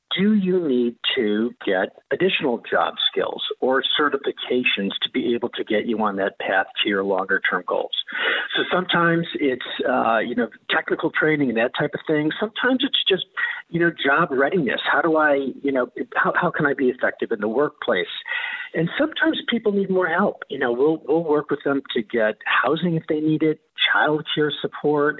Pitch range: 130-190 Hz